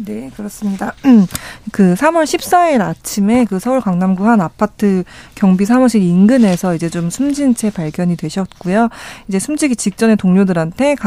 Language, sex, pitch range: Korean, female, 180-225 Hz